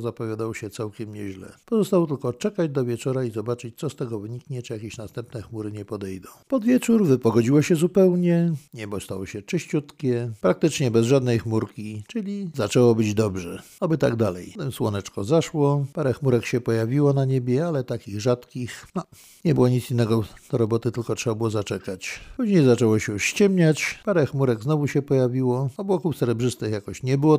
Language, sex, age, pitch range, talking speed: Polish, male, 50-69, 115-155 Hz, 170 wpm